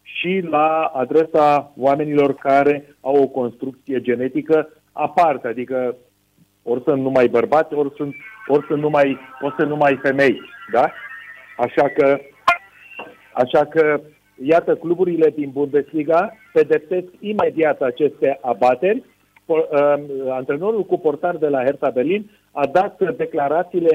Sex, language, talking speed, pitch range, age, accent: male, Romanian, 120 wpm, 135-175 Hz, 40-59, native